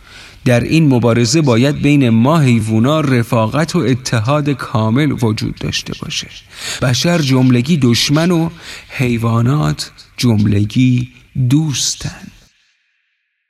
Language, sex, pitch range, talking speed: Persian, male, 115-150 Hz, 95 wpm